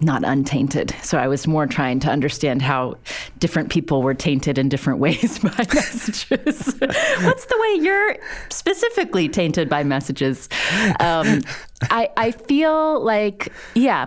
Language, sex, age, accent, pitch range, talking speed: English, female, 30-49, American, 125-175 Hz, 140 wpm